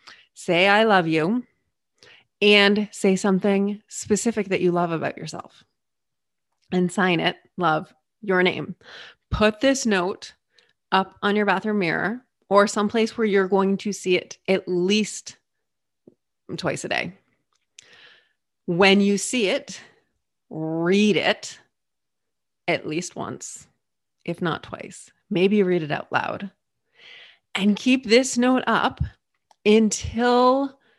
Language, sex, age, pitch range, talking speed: English, female, 30-49, 185-225 Hz, 120 wpm